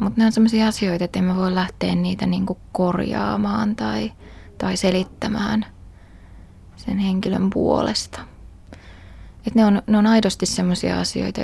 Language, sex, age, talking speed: Finnish, female, 20-39, 135 wpm